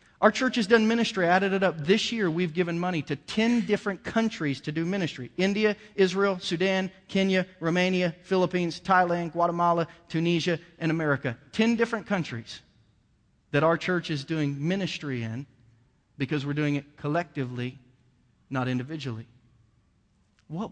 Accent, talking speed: American, 140 wpm